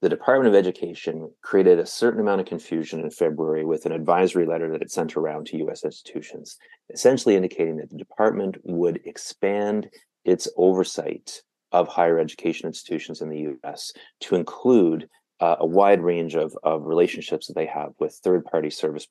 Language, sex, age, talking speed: English, male, 30-49, 175 wpm